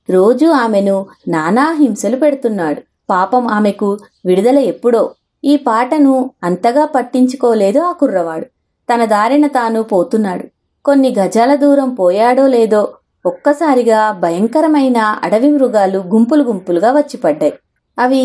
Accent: Indian